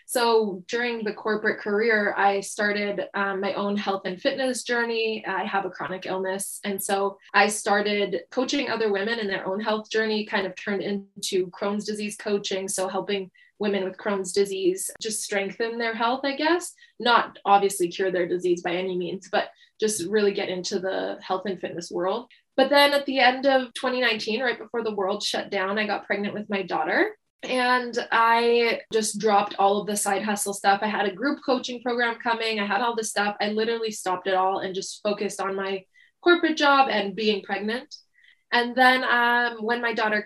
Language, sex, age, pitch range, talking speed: English, female, 20-39, 195-240 Hz, 195 wpm